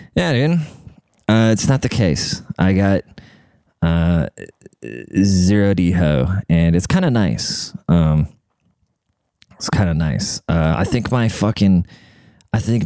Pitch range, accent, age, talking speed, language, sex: 90-115 Hz, American, 20-39, 130 wpm, English, male